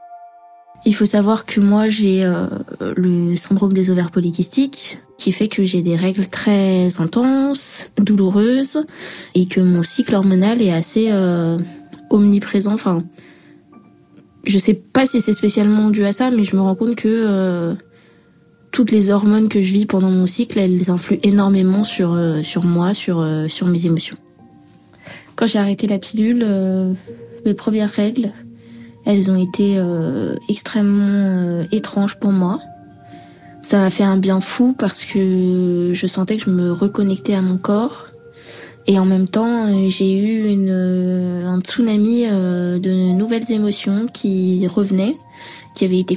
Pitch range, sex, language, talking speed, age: 180-215 Hz, female, French, 160 wpm, 20-39